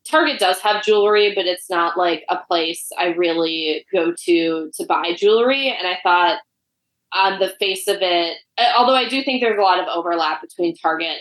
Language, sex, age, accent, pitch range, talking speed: English, female, 20-39, American, 170-210 Hz, 195 wpm